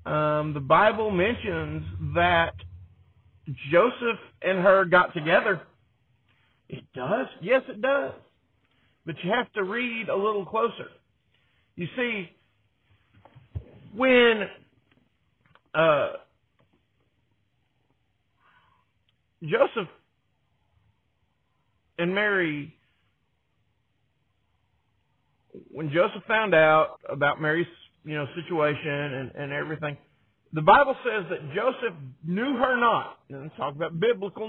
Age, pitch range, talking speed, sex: 40-59, 115-185 Hz, 95 wpm, male